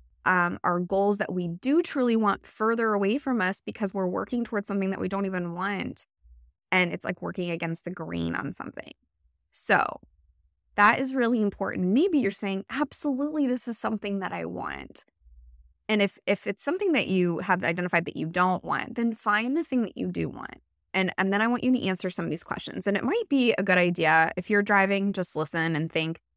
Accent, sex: American, female